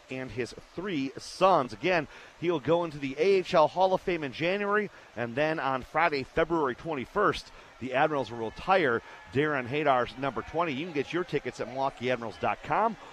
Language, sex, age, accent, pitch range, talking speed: English, male, 40-59, American, 145-210 Hz, 170 wpm